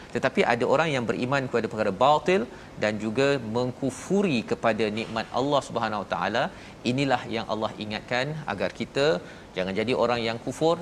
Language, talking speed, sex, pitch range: Malayalam, 155 wpm, male, 110-130 Hz